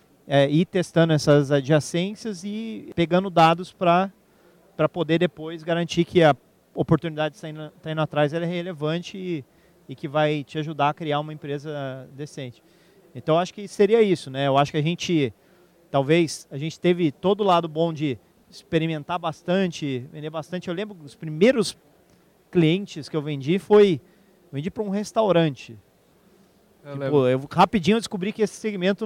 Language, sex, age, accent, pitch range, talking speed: Portuguese, male, 40-59, Brazilian, 155-190 Hz, 160 wpm